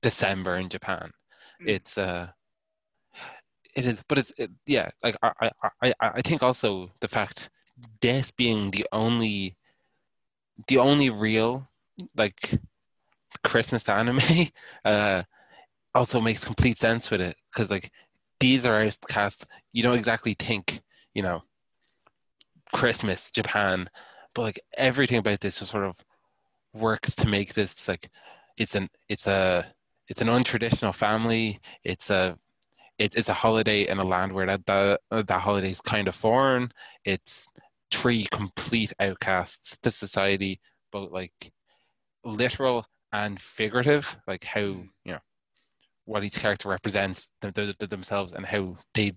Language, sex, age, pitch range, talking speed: English, male, 20-39, 95-115 Hz, 140 wpm